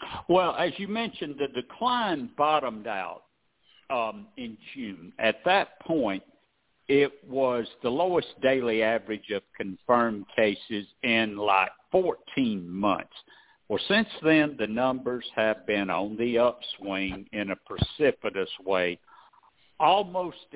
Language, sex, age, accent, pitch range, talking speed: English, male, 60-79, American, 100-150 Hz, 125 wpm